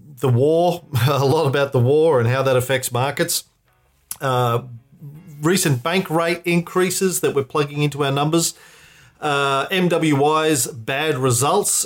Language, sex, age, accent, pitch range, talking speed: English, male, 40-59, Australian, 125-155 Hz, 135 wpm